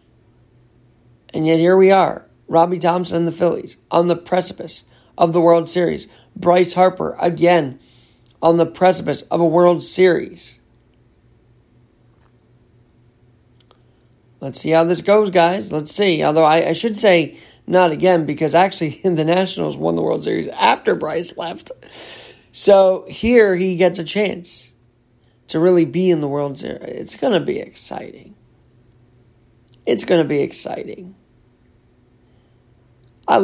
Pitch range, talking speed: 120-180 Hz, 140 wpm